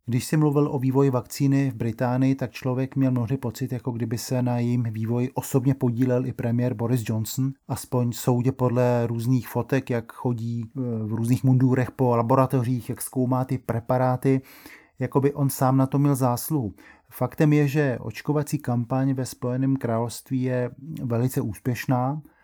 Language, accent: Czech, native